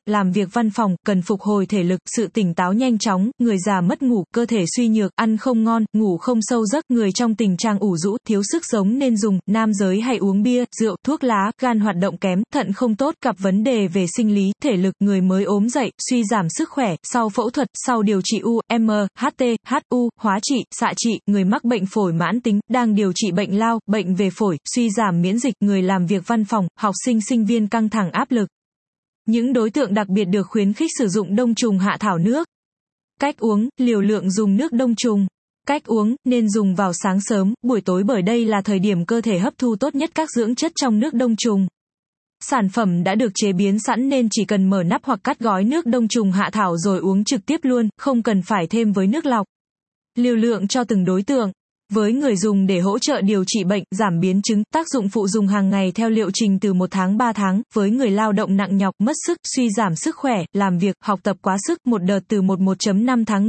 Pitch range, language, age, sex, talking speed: 195-240 Hz, Vietnamese, 20-39, female, 240 wpm